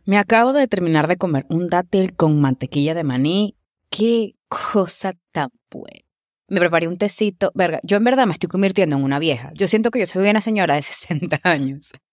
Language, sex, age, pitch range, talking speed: English, female, 20-39, 150-195 Hz, 200 wpm